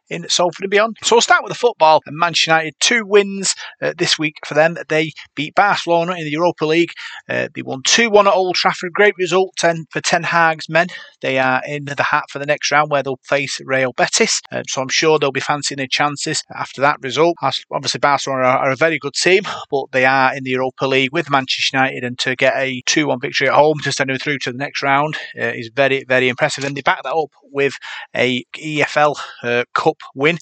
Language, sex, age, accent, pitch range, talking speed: English, male, 30-49, British, 130-160 Hz, 225 wpm